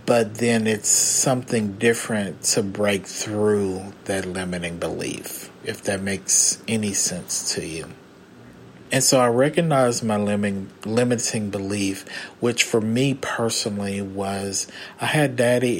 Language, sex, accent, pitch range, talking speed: English, male, American, 100-120 Hz, 130 wpm